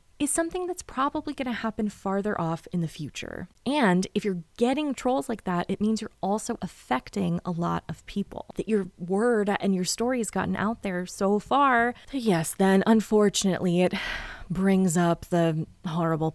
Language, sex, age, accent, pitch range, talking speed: English, female, 20-39, American, 175-230 Hz, 175 wpm